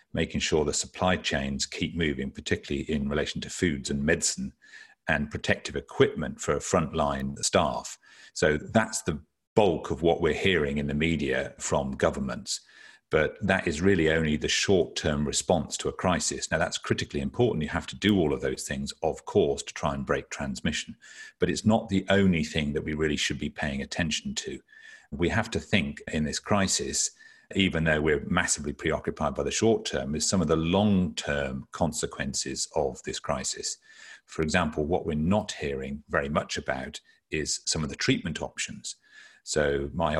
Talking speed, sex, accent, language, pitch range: 180 wpm, male, British, English, 70-95 Hz